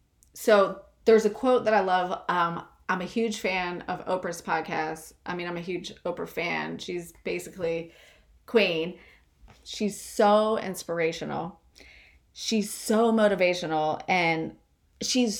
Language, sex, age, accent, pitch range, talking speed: English, female, 30-49, American, 170-210 Hz, 130 wpm